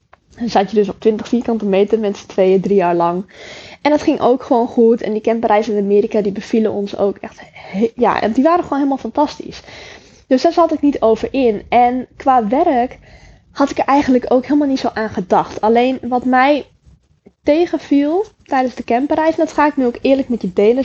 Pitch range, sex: 210-260 Hz, female